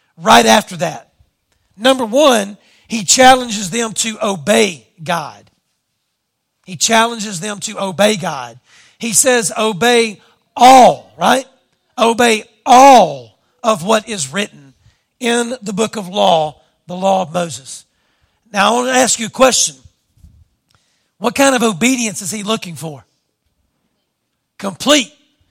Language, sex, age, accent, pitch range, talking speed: English, male, 40-59, American, 180-250 Hz, 125 wpm